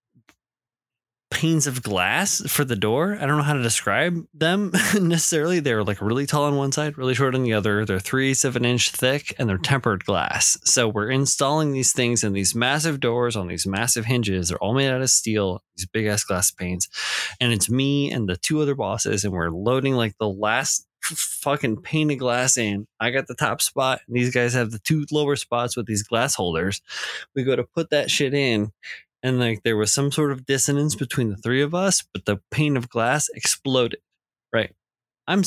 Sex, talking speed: male, 210 wpm